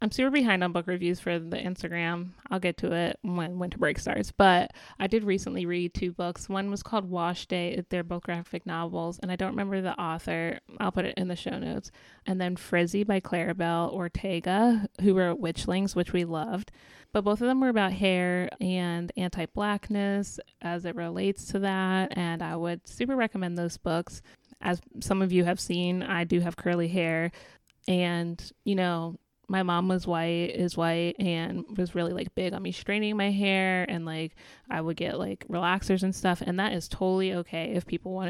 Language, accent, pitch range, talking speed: English, American, 170-195 Hz, 195 wpm